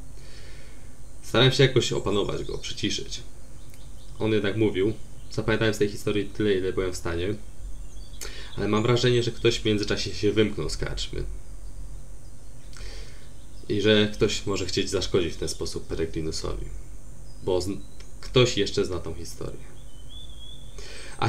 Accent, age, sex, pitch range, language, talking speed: native, 20-39, male, 95-120 Hz, Polish, 125 wpm